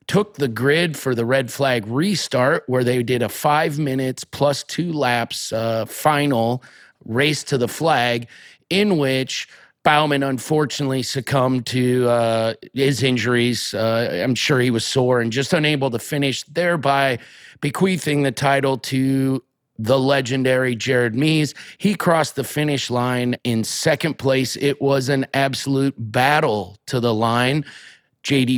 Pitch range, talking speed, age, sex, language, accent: 125-150 Hz, 145 wpm, 30-49, male, English, American